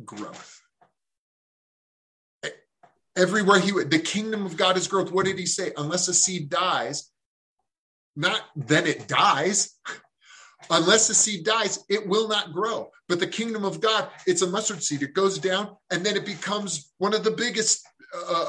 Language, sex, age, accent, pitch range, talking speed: English, male, 30-49, American, 155-200 Hz, 165 wpm